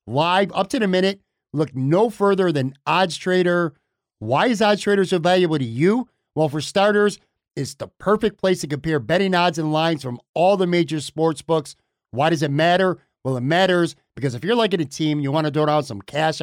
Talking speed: 210 wpm